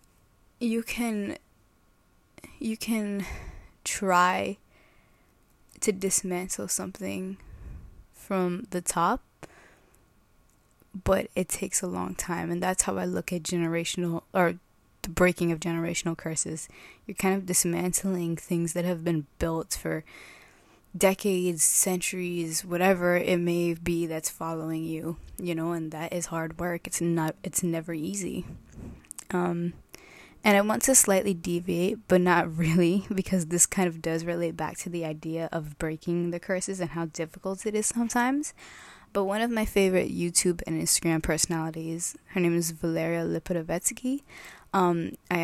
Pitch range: 165-195 Hz